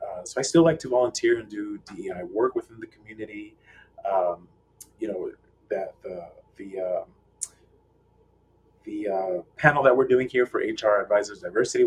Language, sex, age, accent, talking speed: English, male, 30-49, American, 155 wpm